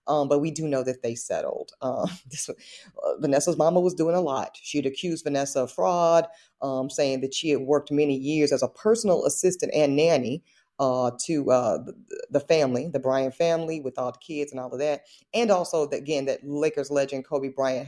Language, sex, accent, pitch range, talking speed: English, female, American, 130-165 Hz, 210 wpm